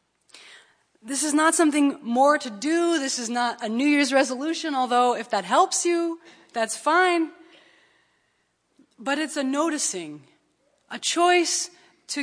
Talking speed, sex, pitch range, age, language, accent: 135 wpm, female, 220-285 Hz, 20-39, English, American